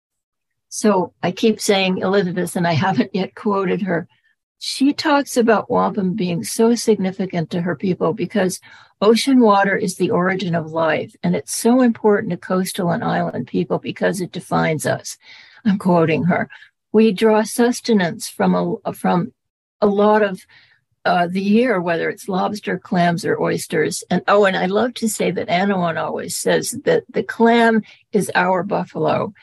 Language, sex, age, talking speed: English, female, 60-79, 160 wpm